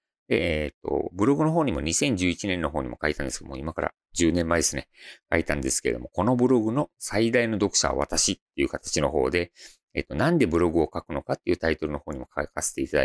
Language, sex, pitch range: Japanese, male, 80-125 Hz